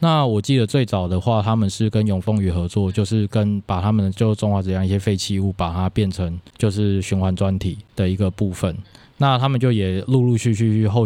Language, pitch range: Chinese, 95-115 Hz